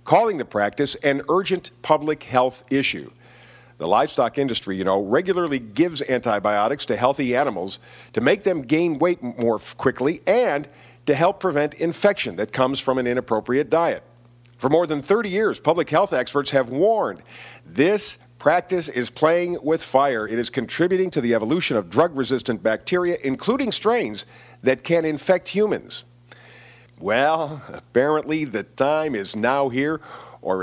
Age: 50-69